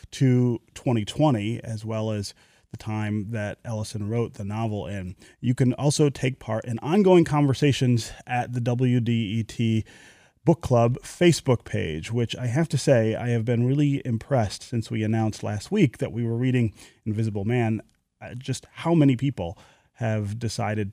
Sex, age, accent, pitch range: male, 30-49, American, 105-130 Hz